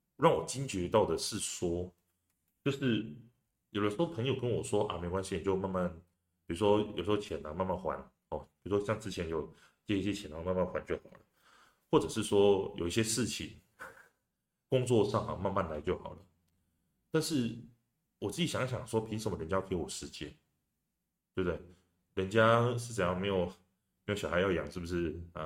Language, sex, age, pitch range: Chinese, male, 30-49, 90-115 Hz